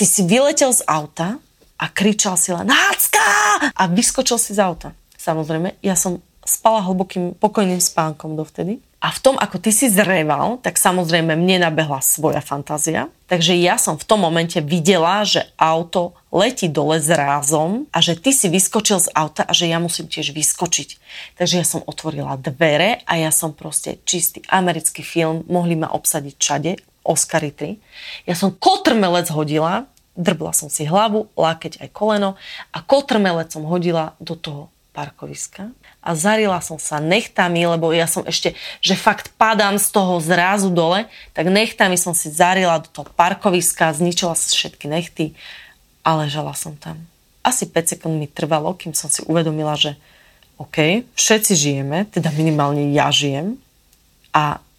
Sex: female